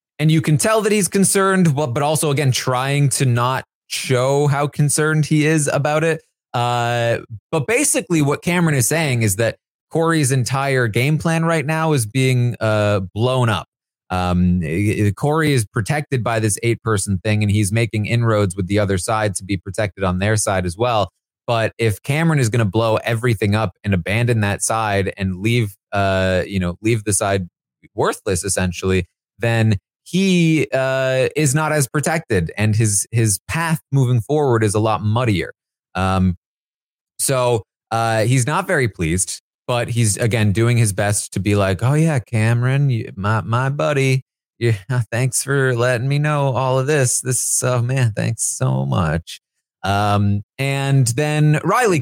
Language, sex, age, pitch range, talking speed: English, male, 20-39, 105-145 Hz, 170 wpm